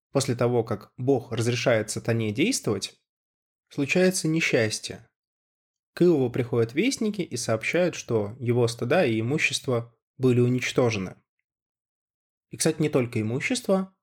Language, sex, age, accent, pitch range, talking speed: Russian, male, 20-39, native, 115-140 Hz, 115 wpm